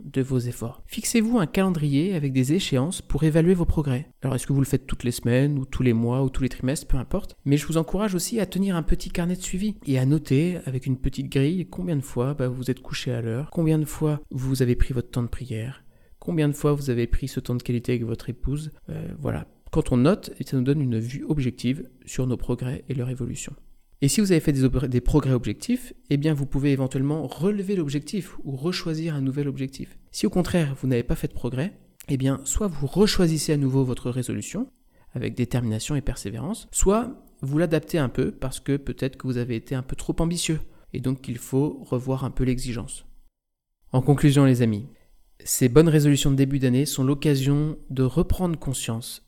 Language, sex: French, male